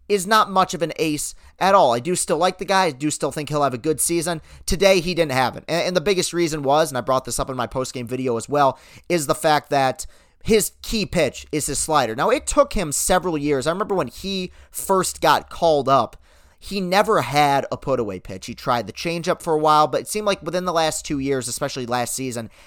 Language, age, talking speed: English, 30-49, 245 wpm